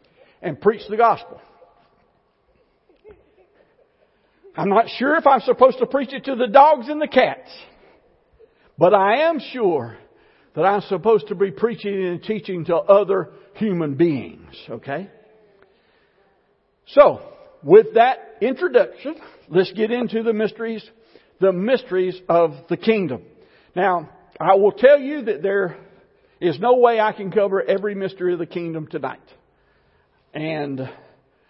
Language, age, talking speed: English, 60-79, 135 wpm